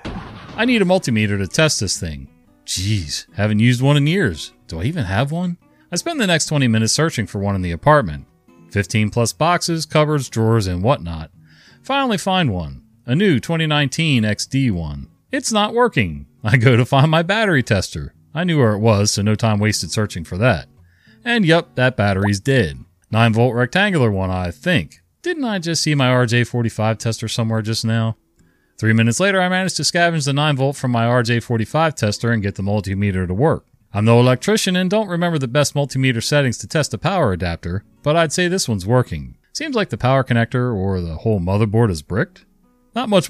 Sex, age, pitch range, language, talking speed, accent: male, 40-59, 100-150 Hz, English, 200 wpm, American